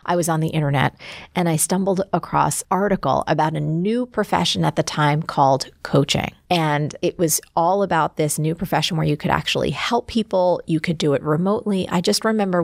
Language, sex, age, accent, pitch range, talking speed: English, female, 30-49, American, 155-190 Hz, 195 wpm